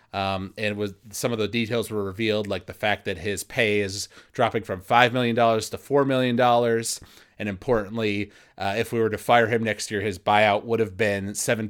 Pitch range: 105-125 Hz